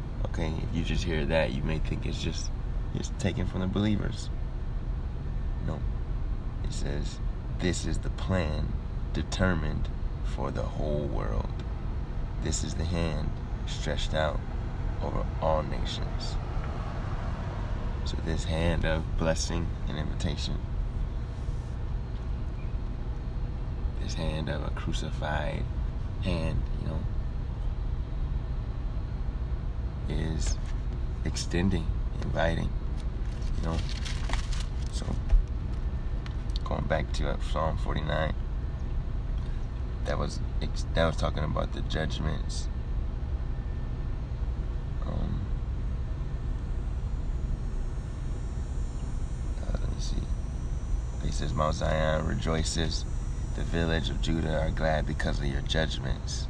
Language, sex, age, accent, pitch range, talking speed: English, male, 20-39, American, 65-80 Hz, 95 wpm